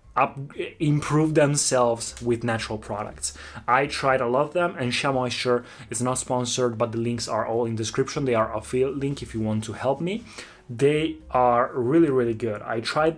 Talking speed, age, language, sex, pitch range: 185 wpm, 20-39, Italian, male, 115-145 Hz